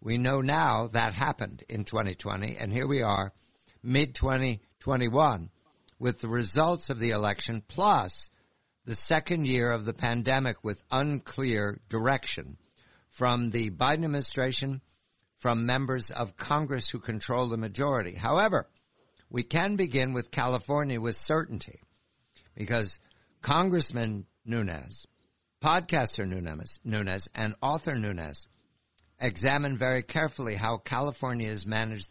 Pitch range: 105-135 Hz